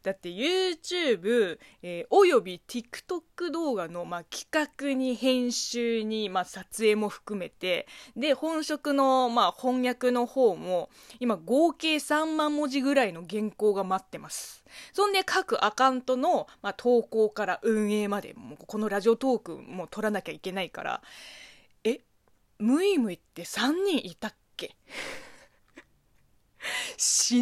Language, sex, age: Japanese, female, 20-39